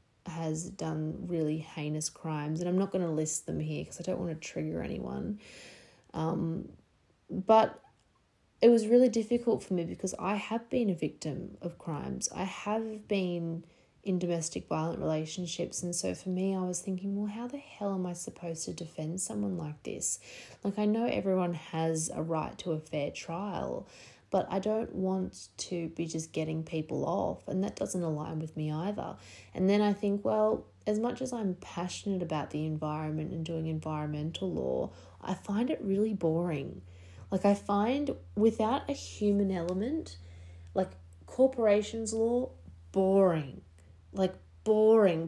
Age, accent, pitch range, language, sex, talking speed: 20-39, Australian, 155-205 Hz, English, female, 165 wpm